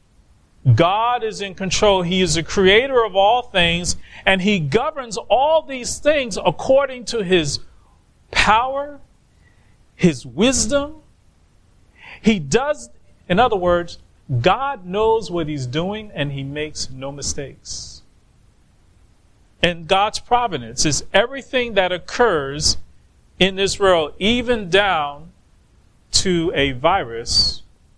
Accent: American